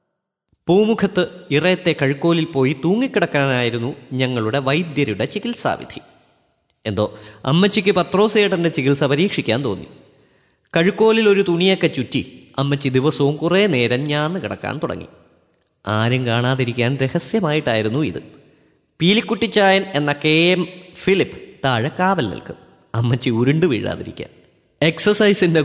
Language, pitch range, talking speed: Malayalam, 120-180 Hz, 95 wpm